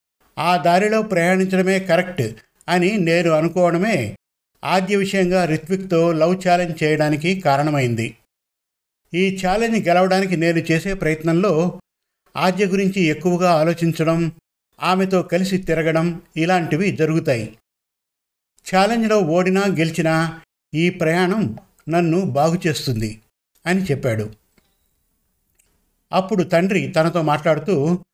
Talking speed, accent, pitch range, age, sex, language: 90 wpm, native, 155-185 Hz, 50-69, male, Telugu